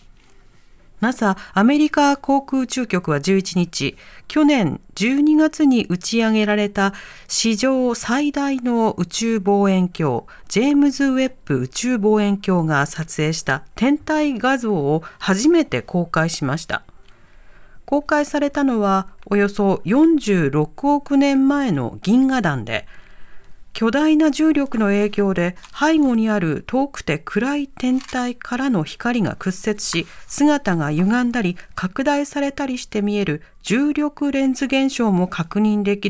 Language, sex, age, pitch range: Japanese, female, 40-59, 180-265 Hz